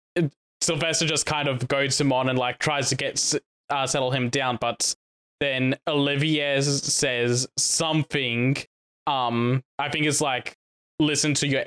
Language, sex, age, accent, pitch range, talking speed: English, male, 20-39, Australian, 125-145 Hz, 150 wpm